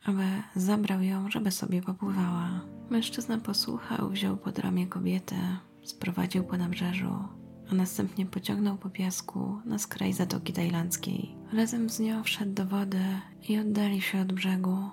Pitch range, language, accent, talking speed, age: 185-210 Hz, Polish, native, 140 wpm, 20-39